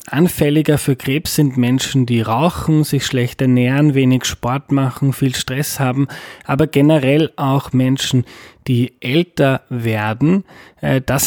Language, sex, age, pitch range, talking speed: German, male, 20-39, 125-150 Hz, 130 wpm